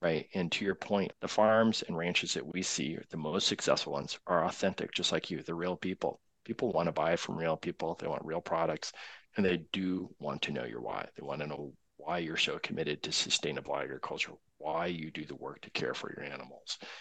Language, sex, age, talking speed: English, male, 40-59, 235 wpm